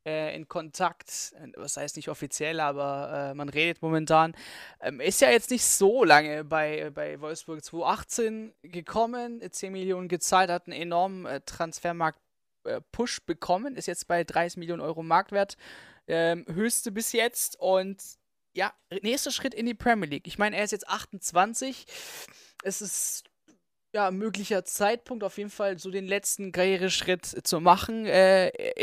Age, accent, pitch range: 20-39, German, 160-205 Hz